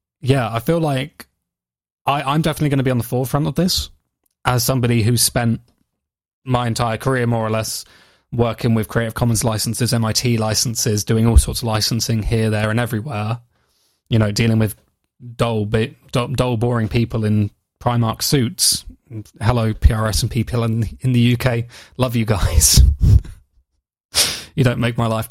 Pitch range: 110-125 Hz